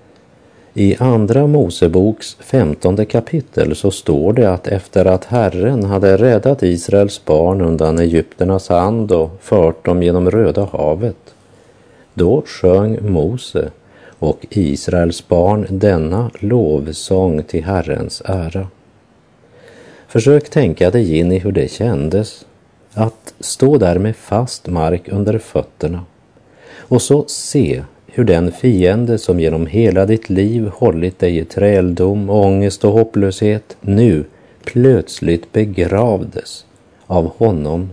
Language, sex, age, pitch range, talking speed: Swedish, male, 50-69, 85-110 Hz, 120 wpm